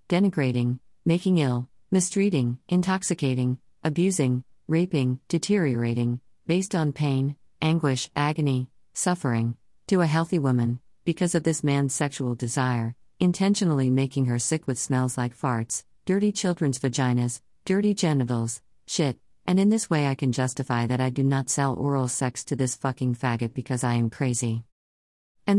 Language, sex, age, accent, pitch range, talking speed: English, female, 50-69, American, 125-160 Hz, 145 wpm